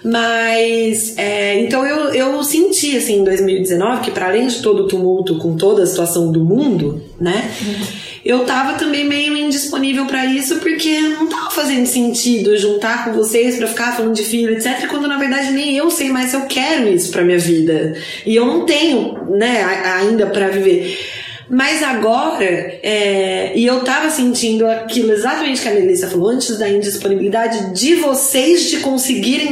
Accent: Brazilian